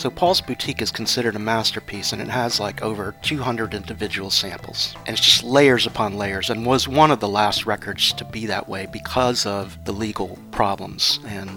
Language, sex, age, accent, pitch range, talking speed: English, male, 40-59, American, 105-125 Hz, 195 wpm